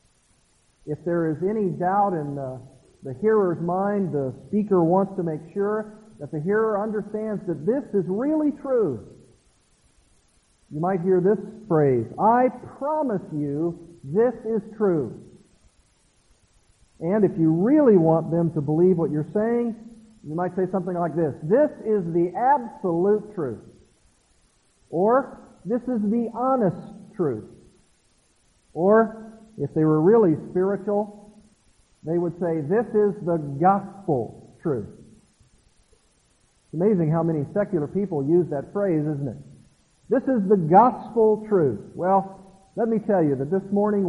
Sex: male